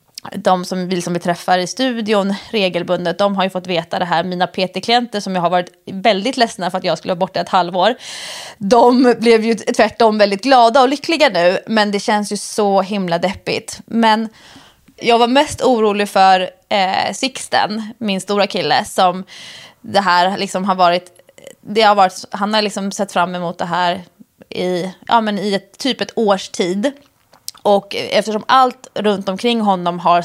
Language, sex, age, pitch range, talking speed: English, female, 20-39, 185-220 Hz, 180 wpm